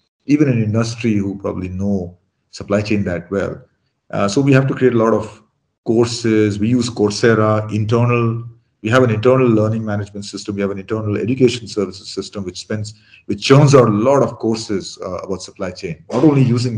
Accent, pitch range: Indian, 90-115 Hz